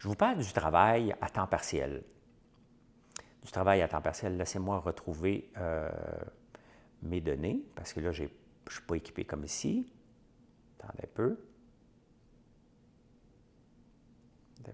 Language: English